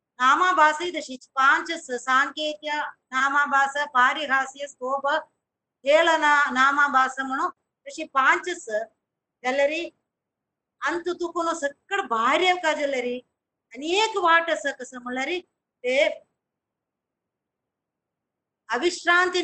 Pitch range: 260-325 Hz